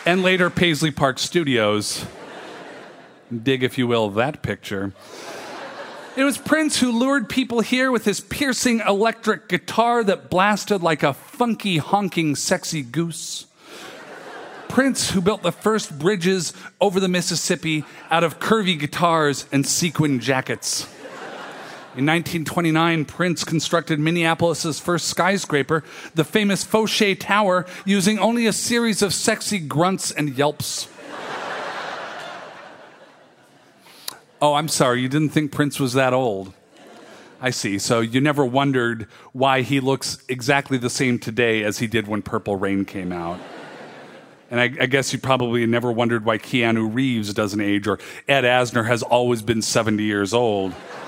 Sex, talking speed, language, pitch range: male, 140 wpm, English, 125-185 Hz